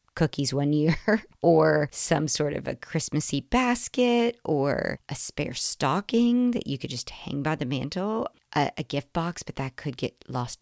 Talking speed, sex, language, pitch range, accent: 175 wpm, female, English, 145-180 Hz, American